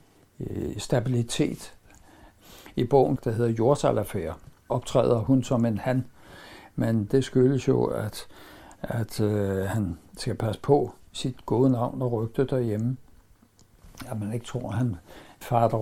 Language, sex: Danish, male